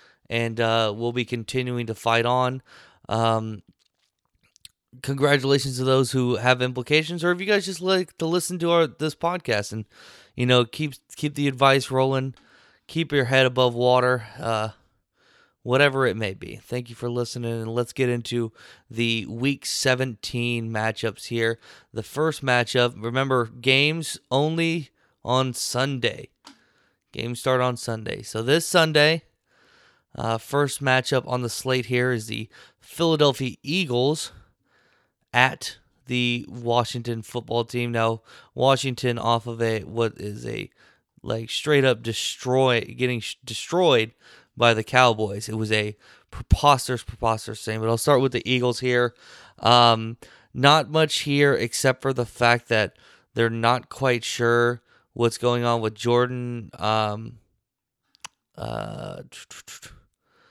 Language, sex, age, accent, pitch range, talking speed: English, male, 20-39, American, 115-135 Hz, 140 wpm